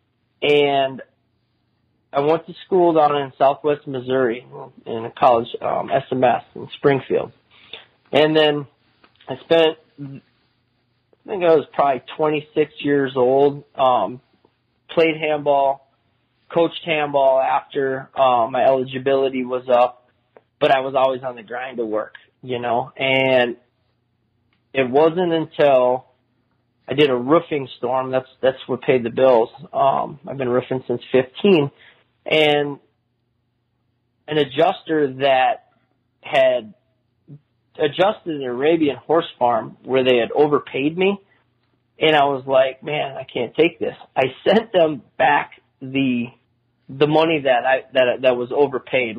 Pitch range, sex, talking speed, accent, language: 125-150 Hz, male, 130 wpm, American, English